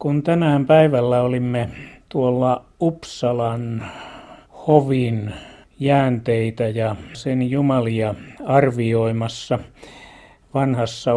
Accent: native